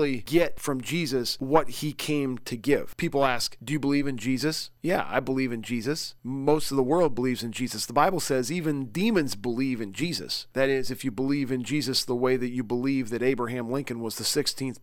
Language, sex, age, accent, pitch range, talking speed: English, male, 40-59, American, 125-150 Hz, 215 wpm